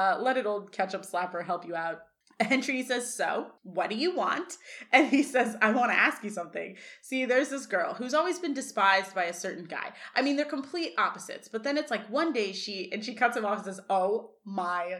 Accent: American